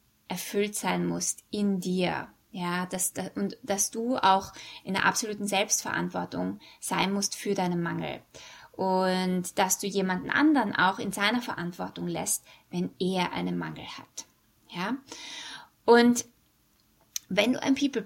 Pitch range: 185-235 Hz